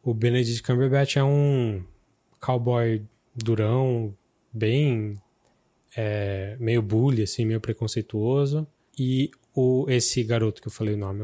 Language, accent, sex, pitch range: Portuguese, Brazilian, male, 110-135 Hz